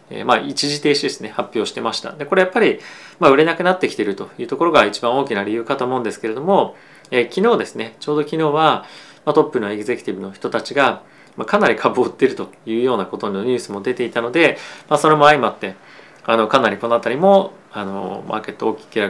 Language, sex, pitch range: Japanese, male, 110-160 Hz